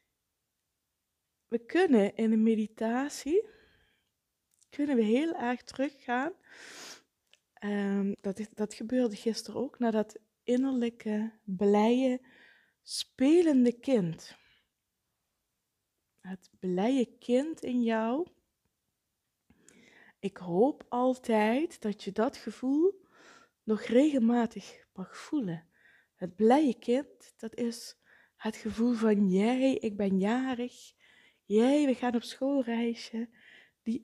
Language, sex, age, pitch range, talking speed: Dutch, female, 20-39, 215-260 Hz, 100 wpm